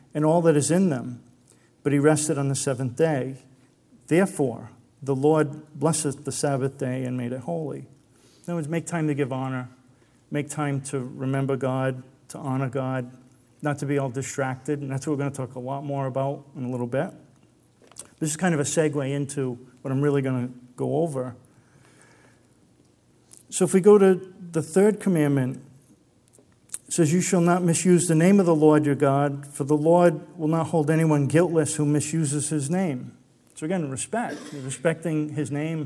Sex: male